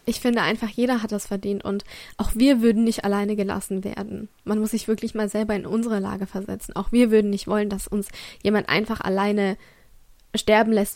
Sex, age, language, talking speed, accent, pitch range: female, 20-39, German, 205 wpm, German, 205-235 Hz